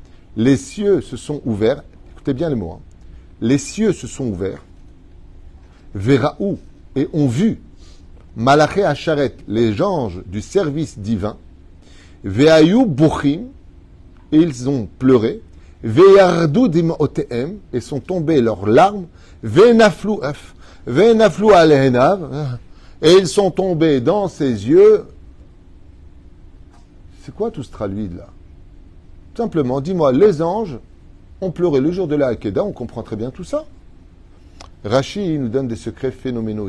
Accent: French